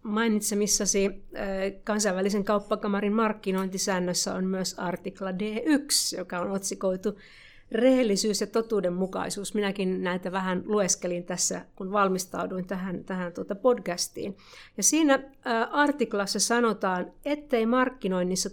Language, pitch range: Finnish, 190-230 Hz